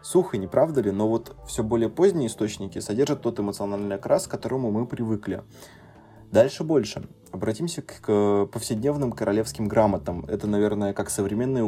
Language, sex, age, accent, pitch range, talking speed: Russian, male, 20-39, native, 100-120 Hz, 150 wpm